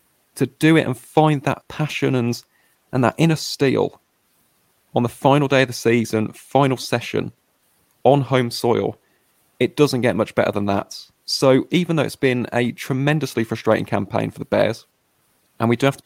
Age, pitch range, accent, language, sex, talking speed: 30-49, 110-130 Hz, British, English, male, 180 wpm